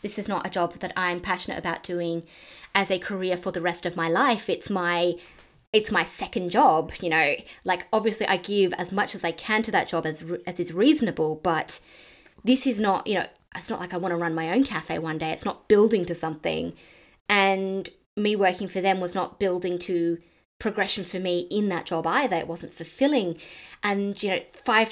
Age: 20-39